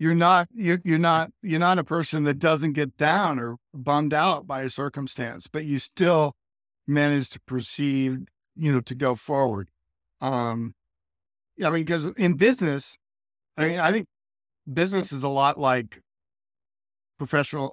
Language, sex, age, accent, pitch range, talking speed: English, male, 50-69, American, 120-150 Hz, 150 wpm